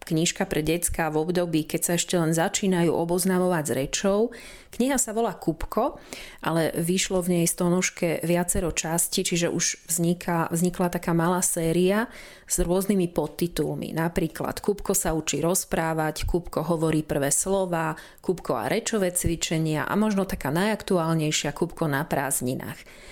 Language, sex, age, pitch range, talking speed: Slovak, female, 30-49, 160-195 Hz, 140 wpm